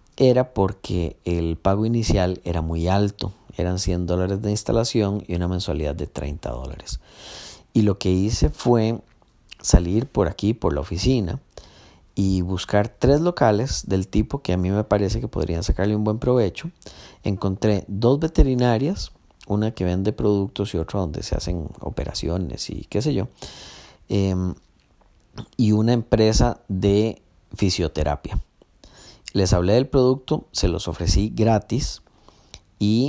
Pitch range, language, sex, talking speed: 90-120 Hz, Spanish, male, 145 wpm